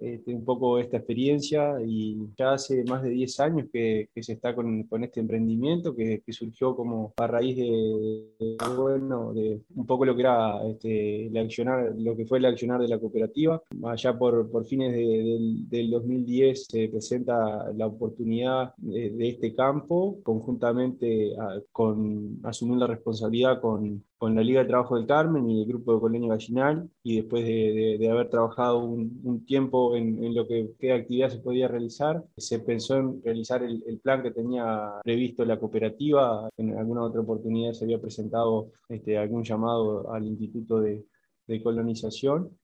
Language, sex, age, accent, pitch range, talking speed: Spanish, male, 20-39, Argentinian, 110-125 Hz, 180 wpm